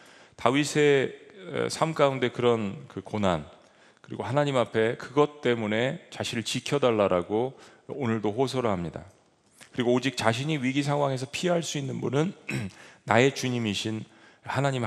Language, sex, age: Korean, male, 40-59